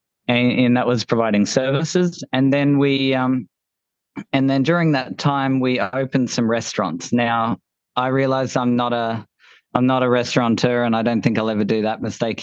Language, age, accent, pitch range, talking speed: English, 20-39, Australian, 115-135 Hz, 180 wpm